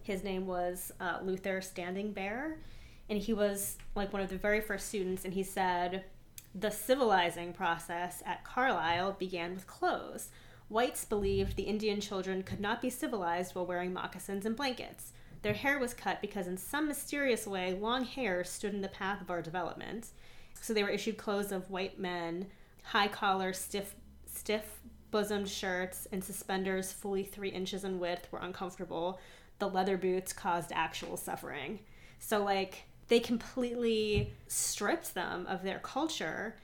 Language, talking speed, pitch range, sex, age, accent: English, 155 wpm, 185-210 Hz, female, 30-49, American